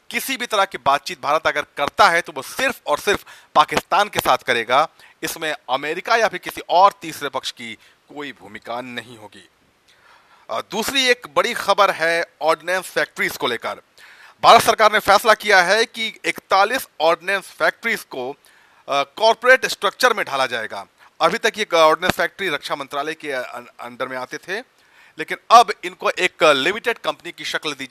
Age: 40-59